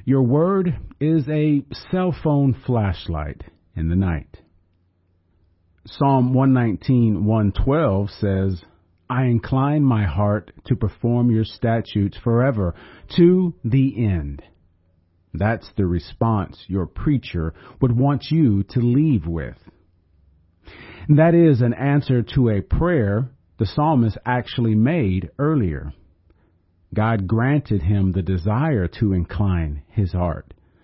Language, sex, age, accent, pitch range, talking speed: English, male, 40-59, American, 85-125 Hz, 115 wpm